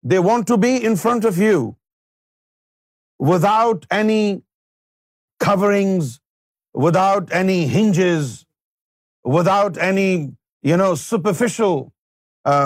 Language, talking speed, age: Urdu, 95 wpm, 50-69